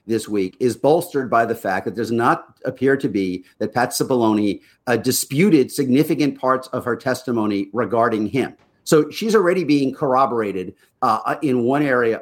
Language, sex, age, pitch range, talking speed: English, male, 50-69, 115-140 Hz, 165 wpm